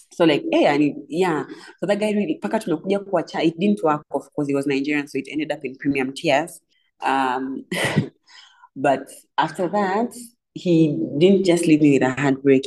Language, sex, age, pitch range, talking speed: Swahili, female, 30-49, 135-185 Hz, 175 wpm